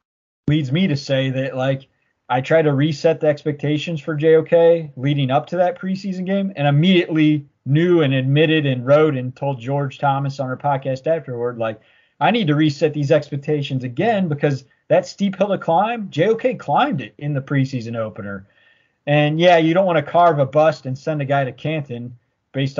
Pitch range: 130-155 Hz